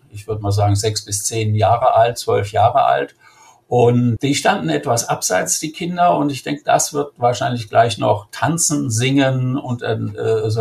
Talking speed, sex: 180 wpm, male